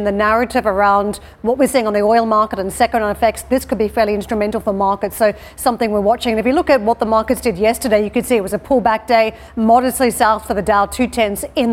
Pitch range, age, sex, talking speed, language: 215-245 Hz, 40-59, female, 250 wpm, English